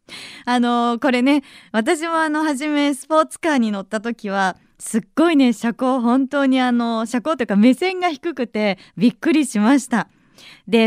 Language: Japanese